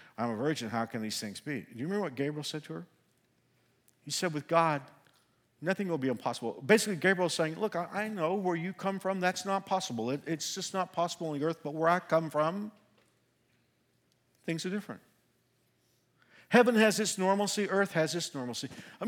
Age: 50-69